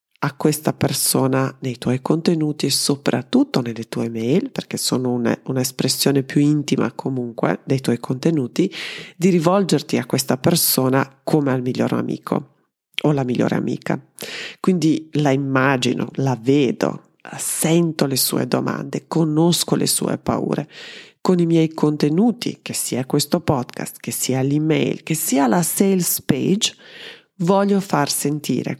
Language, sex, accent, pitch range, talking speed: Italian, female, native, 135-175 Hz, 135 wpm